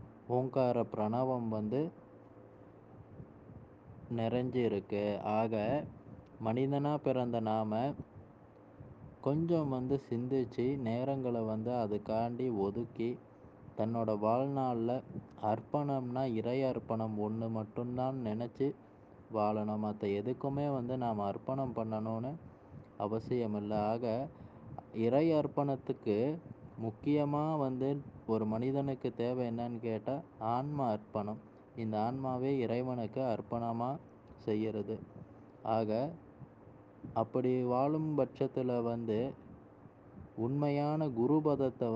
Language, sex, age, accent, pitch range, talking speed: Tamil, male, 20-39, native, 110-135 Hz, 85 wpm